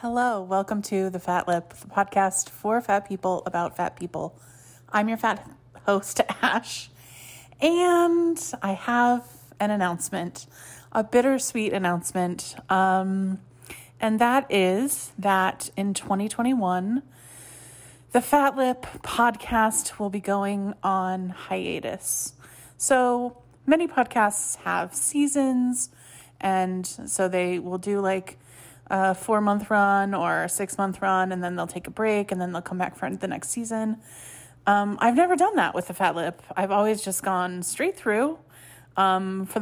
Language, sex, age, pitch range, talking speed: English, female, 30-49, 180-220 Hz, 140 wpm